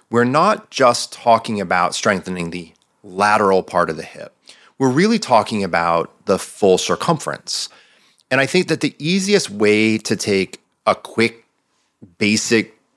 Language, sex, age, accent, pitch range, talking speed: English, male, 30-49, American, 100-135 Hz, 145 wpm